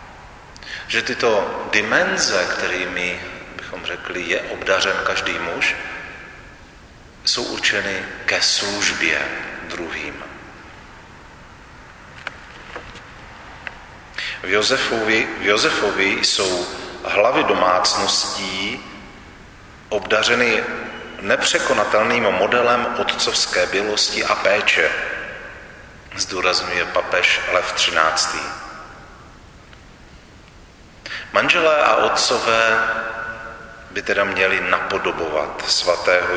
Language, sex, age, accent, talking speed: Czech, male, 40-59, native, 65 wpm